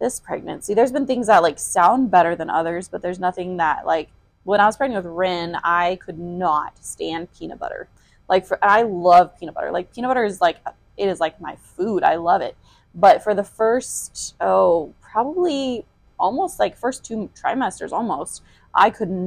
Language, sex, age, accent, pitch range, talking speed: English, female, 20-39, American, 180-235 Hz, 190 wpm